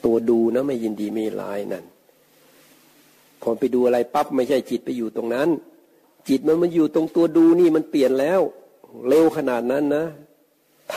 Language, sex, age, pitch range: Thai, male, 60-79, 120-160 Hz